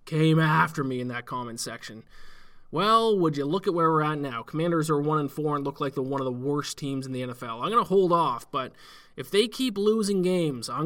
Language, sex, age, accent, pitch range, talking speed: English, male, 20-39, American, 130-165 Hz, 245 wpm